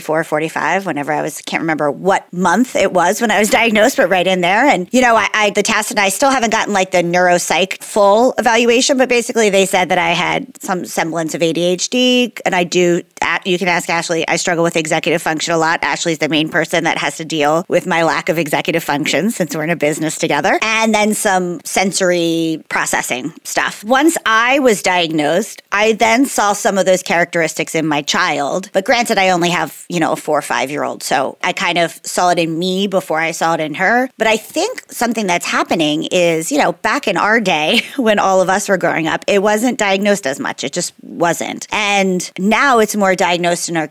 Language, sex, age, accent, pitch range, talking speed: English, female, 30-49, American, 170-225 Hz, 225 wpm